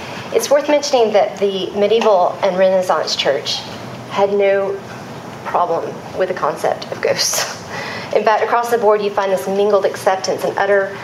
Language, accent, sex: English, American, female